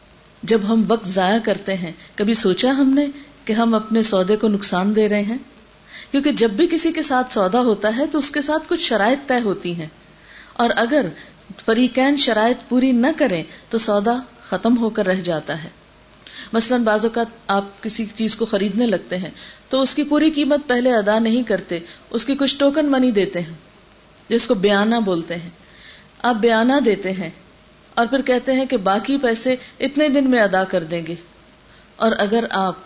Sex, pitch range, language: female, 185-235 Hz, Urdu